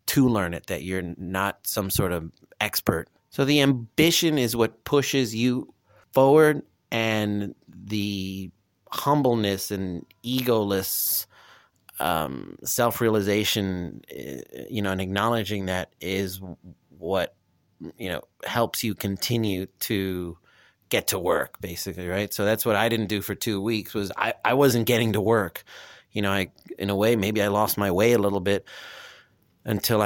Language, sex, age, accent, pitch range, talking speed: English, male, 30-49, American, 95-115 Hz, 150 wpm